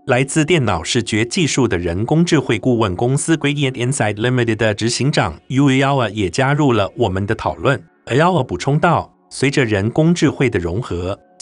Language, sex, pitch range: Chinese, male, 105-150 Hz